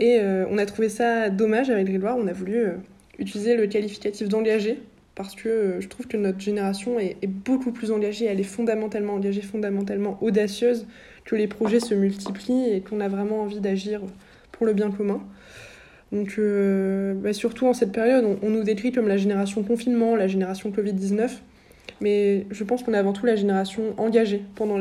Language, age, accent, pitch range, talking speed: French, 20-39, French, 200-225 Hz, 195 wpm